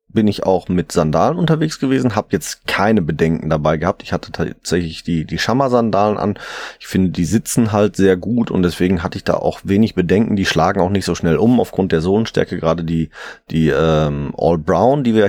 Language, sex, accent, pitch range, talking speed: German, male, German, 85-110 Hz, 210 wpm